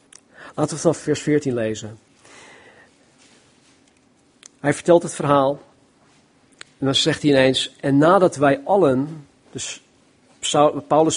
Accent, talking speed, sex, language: Dutch, 115 wpm, male, Dutch